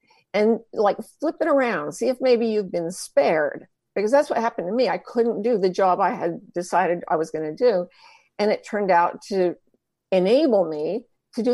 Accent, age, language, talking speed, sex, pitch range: American, 50-69, English, 200 wpm, female, 180-245 Hz